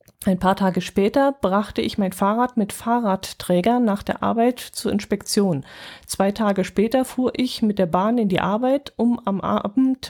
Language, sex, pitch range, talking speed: German, female, 190-230 Hz, 170 wpm